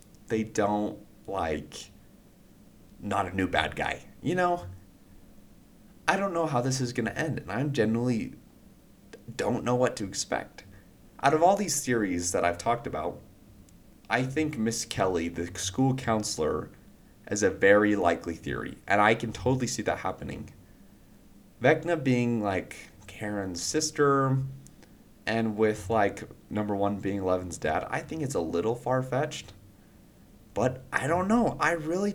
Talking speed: 150 wpm